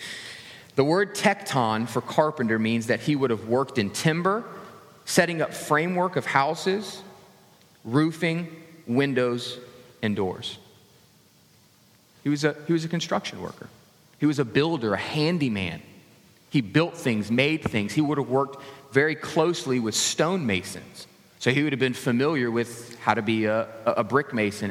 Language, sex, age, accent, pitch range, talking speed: English, male, 30-49, American, 115-160 Hz, 155 wpm